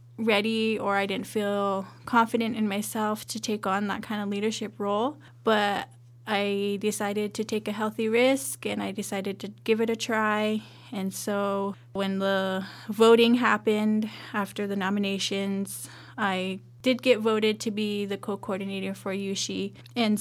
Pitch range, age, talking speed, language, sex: 195-215 Hz, 10-29, 155 wpm, English, female